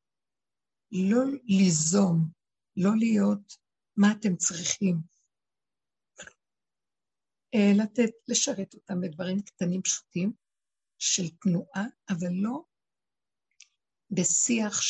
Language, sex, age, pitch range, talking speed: Hebrew, female, 60-79, 175-230 Hz, 75 wpm